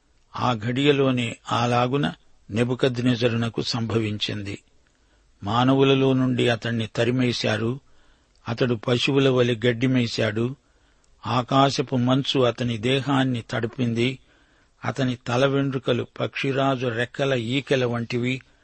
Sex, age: male, 50-69